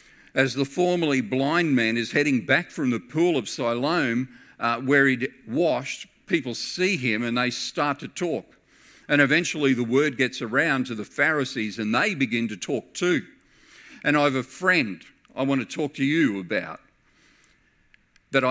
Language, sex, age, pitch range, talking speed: English, male, 50-69, 115-145 Hz, 170 wpm